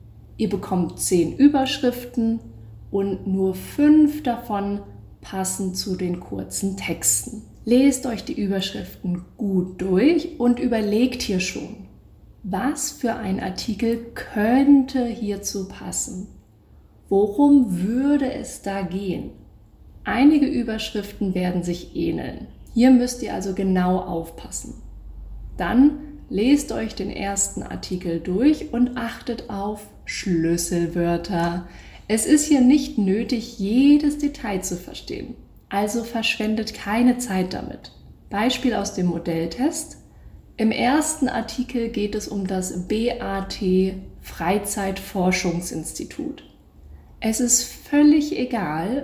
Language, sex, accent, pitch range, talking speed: German, female, German, 185-250 Hz, 110 wpm